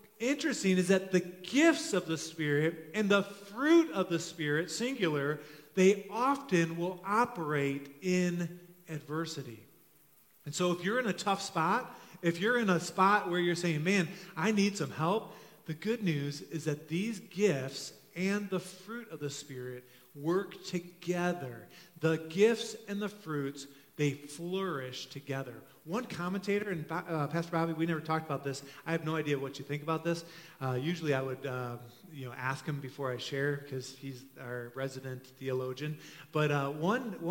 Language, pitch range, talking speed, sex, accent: English, 140-180 Hz, 170 wpm, male, American